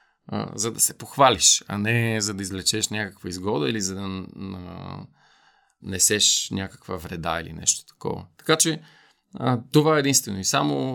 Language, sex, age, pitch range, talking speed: Bulgarian, male, 40-59, 95-120 Hz, 160 wpm